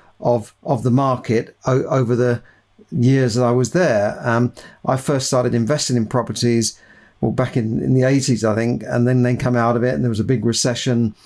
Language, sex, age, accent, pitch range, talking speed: English, male, 50-69, British, 120-140 Hz, 215 wpm